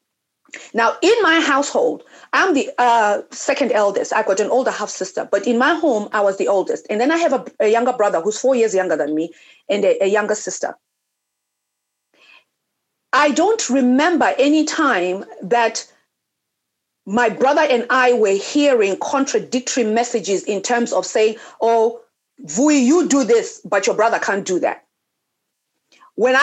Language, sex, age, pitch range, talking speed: English, female, 40-59, 220-310 Hz, 160 wpm